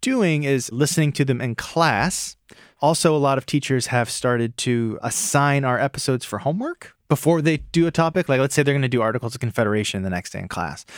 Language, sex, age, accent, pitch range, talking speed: English, male, 30-49, American, 110-145 Hz, 220 wpm